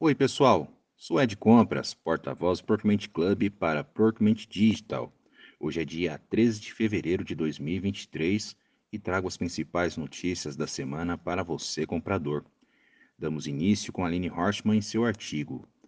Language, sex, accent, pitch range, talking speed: Portuguese, male, Brazilian, 85-120 Hz, 140 wpm